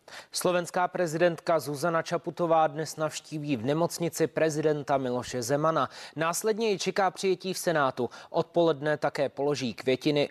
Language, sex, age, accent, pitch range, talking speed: Czech, male, 20-39, native, 140-170 Hz, 120 wpm